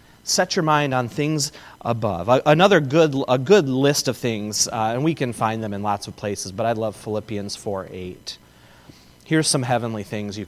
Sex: male